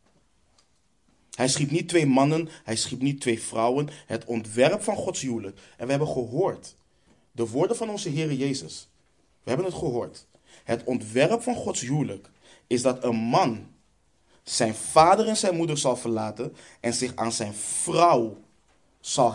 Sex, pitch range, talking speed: male, 115-155 Hz, 160 wpm